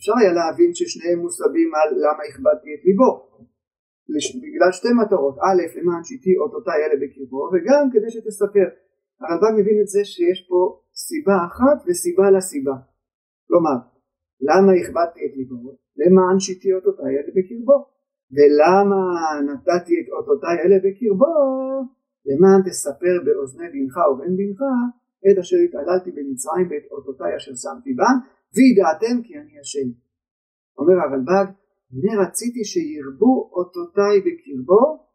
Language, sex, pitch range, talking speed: Hebrew, male, 170-265 Hz, 125 wpm